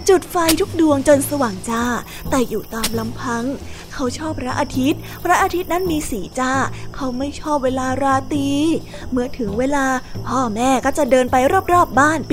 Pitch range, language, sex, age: 250-320 Hz, Thai, female, 20-39